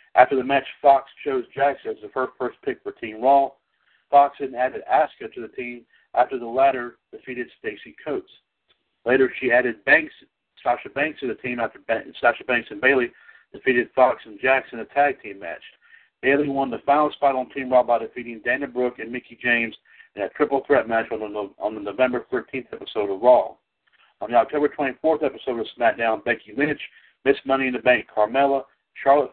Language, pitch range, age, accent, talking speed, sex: English, 120-140 Hz, 60-79, American, 195 wpm, male